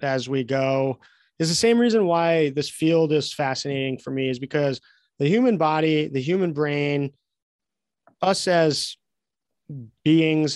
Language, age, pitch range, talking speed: English, 30-49, 135-160 Hz, 140 wpm